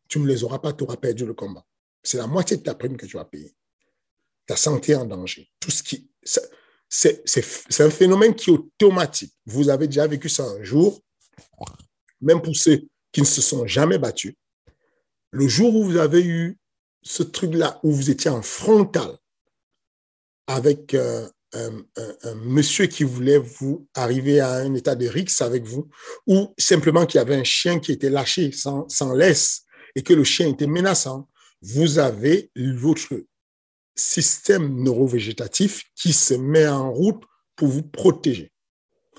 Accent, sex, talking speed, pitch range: French, male, 165 wpm, 125-160 Hz